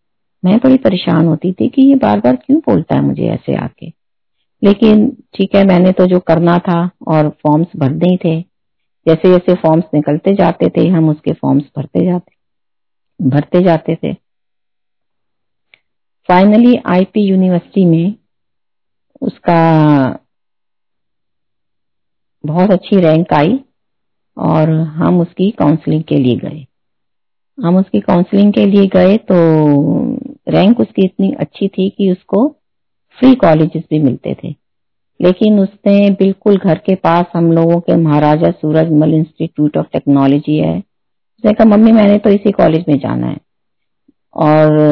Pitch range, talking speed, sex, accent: 155-195 Hz, 140 wpm, female, native